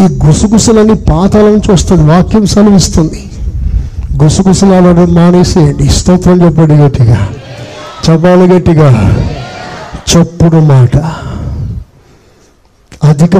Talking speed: 75 wpm